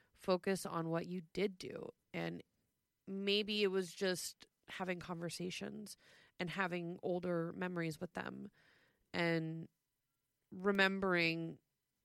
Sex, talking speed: female, 105 wpm